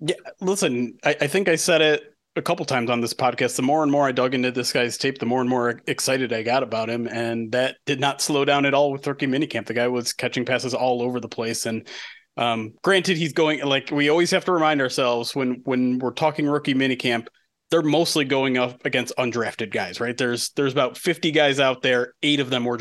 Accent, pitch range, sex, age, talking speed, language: American, 125-150 Hz, male, 30-49, 235 wpm, English